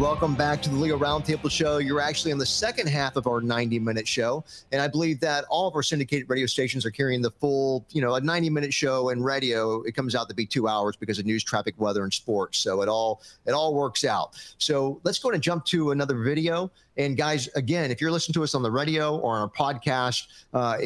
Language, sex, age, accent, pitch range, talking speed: English, male, 40-59, American, 115-145 Hz, 240 wpm